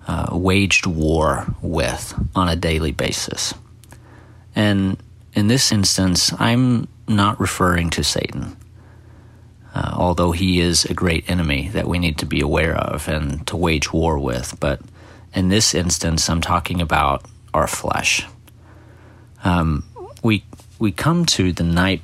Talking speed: 140 wpm